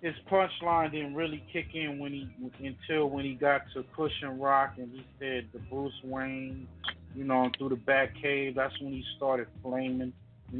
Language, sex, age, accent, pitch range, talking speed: English, male, 20-39, American, 110-140 Hz, 190 wpm